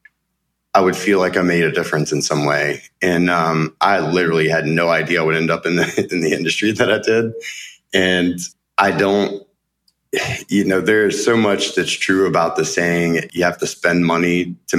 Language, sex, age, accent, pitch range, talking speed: English, male, 30-49, American, 80-90 Hz, 195 wpm